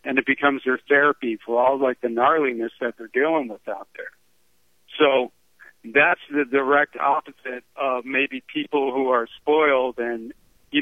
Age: 50-69